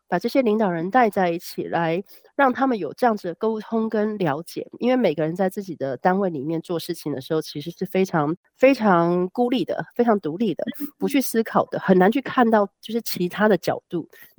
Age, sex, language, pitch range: 30-49, female, Chinese, 170-215 Hz